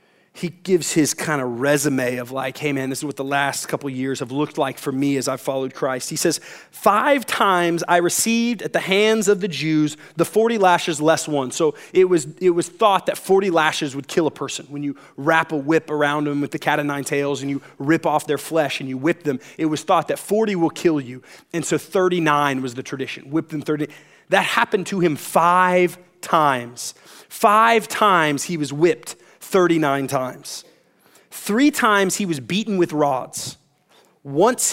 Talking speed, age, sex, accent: 205 wpm, 30-49, male, American